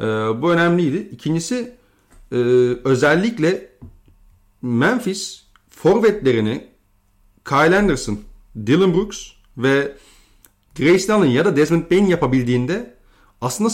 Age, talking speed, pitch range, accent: 40-59, 85 wpm, 115-180 Hz, native